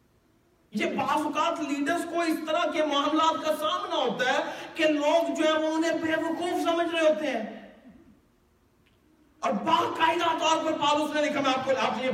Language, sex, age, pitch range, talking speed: Urdu, male, 50-69, 290-330 Hz, 140 wpm